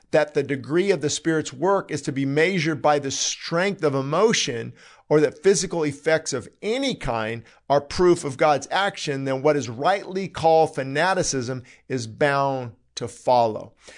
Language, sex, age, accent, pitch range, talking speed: English, male, 50-69, American, 135-175 Hz, 165 wpm